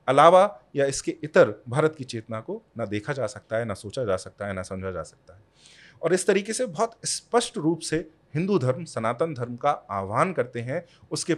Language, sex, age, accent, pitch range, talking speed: Hindi, male, 30-49, native, 115-165 Hz, 210 wpm